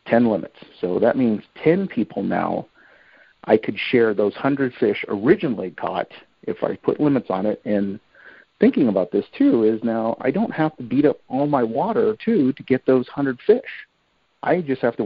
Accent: American